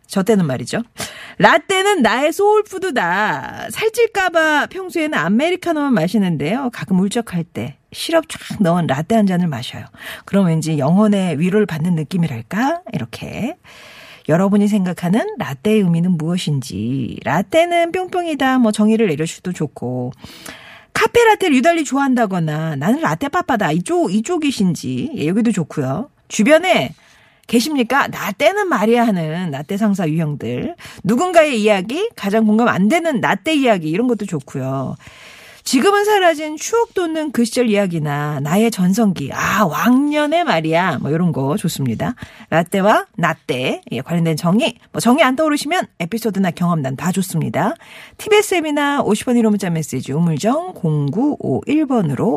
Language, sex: Korean, female